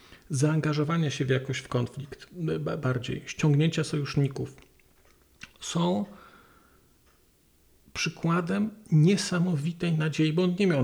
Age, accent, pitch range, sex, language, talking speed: 40-59, native, 145-180 Hz, male, Polish, 95 wpm